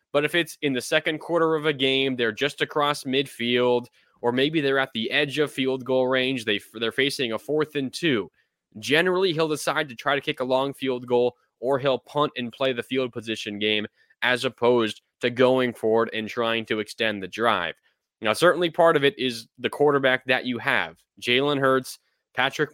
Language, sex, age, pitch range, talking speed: English, male, 20-39, 120-145 Hz, 200 wpm